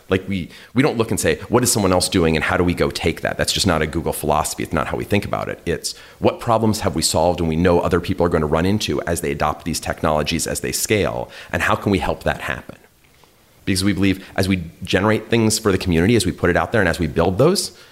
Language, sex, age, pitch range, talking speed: English, male, 30-49, 85-110 Hz, 280 wpm